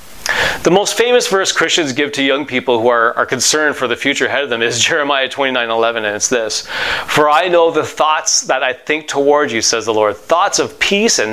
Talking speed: 235 wpm